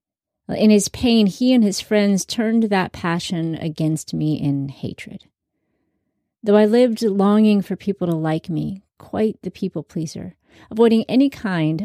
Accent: American